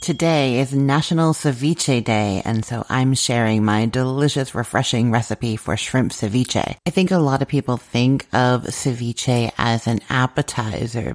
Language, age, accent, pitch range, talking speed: English, 30-49, American, 120-155 Hz, 150 wpm